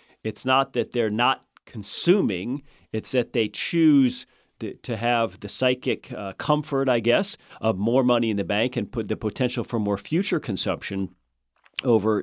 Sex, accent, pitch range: male, American, 105-130 Hz